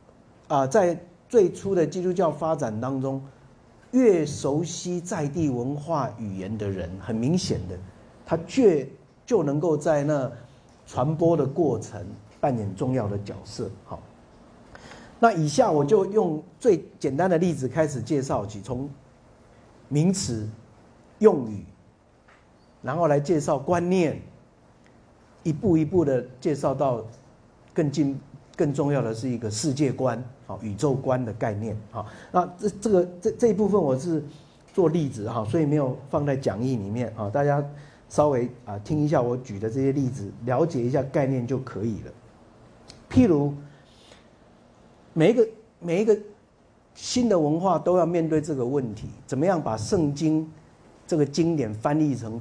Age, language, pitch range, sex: 50-69, Chinese, 115-160 Hz, male